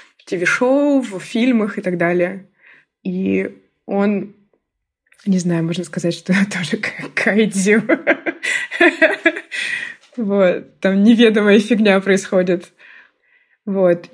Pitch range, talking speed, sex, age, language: 185-245 Hz, 95 wpm, female, 20-39, Russian